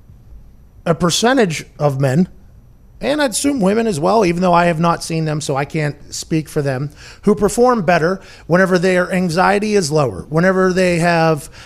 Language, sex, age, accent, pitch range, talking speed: English, male, 30-49, American, 150-190 Hz, 175 wpm